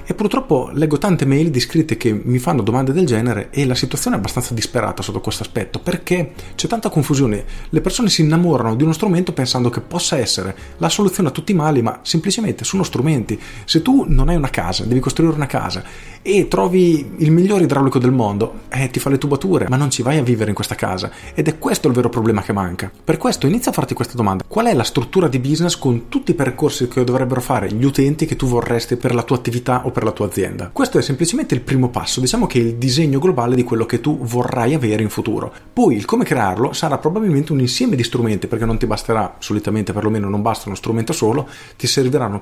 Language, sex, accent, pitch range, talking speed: Italian, male, native, 115-155 Hz, 230 wpm